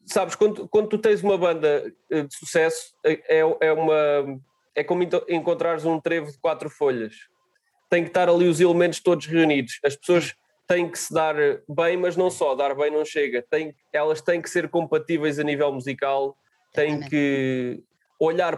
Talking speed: 165 wpm